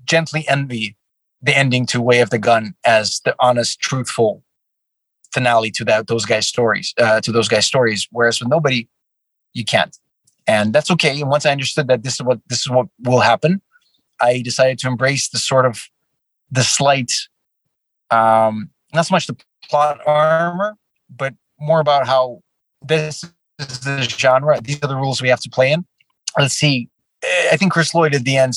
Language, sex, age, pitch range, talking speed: English, male, 30-49, 120-145 Hz, 185 wpm